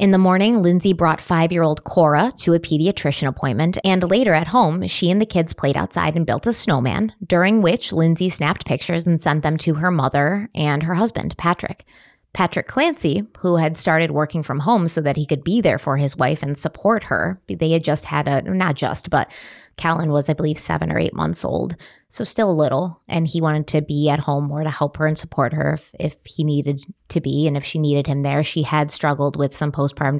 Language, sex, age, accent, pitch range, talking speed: English, female, 20-39, American, 150-180 Hz, 225 wpm